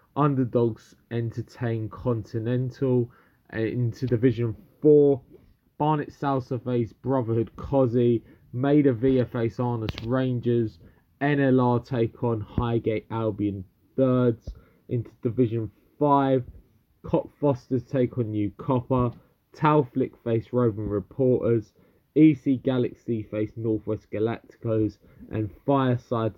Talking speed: 95 wpm